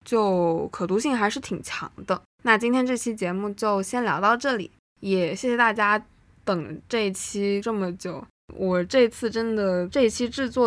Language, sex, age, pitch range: Chinese, female, 20-39, 190-230 Hz